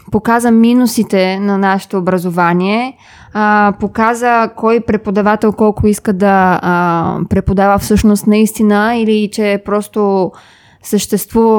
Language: Bulgarian